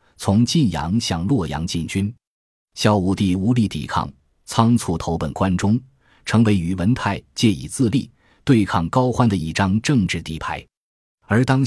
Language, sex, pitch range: Chinese, male, 85-120 Hz